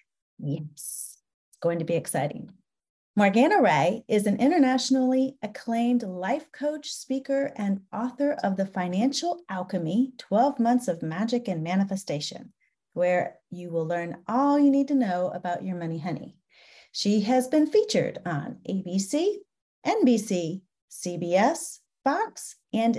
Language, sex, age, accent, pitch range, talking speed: English, female, 30-49, American, 180-260 Hz, 130 wpm